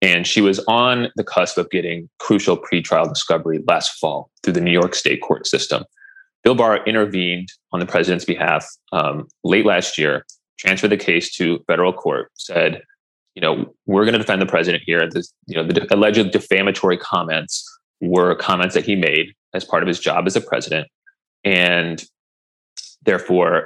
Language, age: English, 30-49